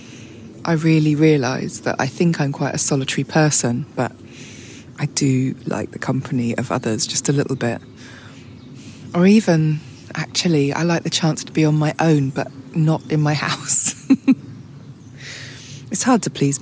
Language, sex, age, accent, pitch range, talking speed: English, female, 20-39, British, 130-155 Hz, 160 wpm